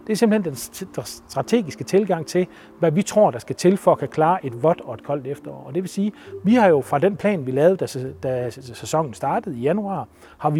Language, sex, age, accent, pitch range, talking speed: Danish, male, 40-59, native, 135-190 Hz, 240 wpm